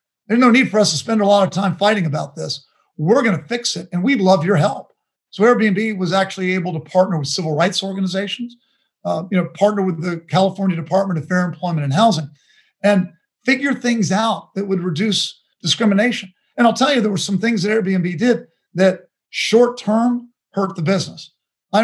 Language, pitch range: English, 175-215 Hz